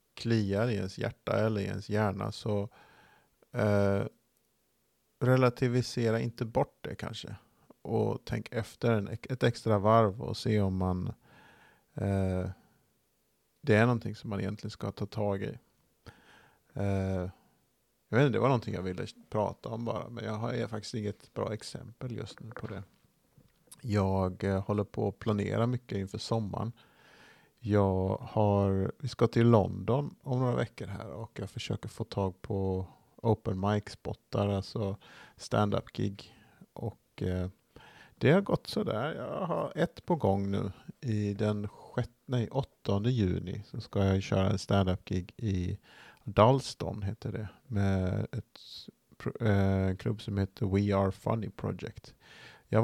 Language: Swedish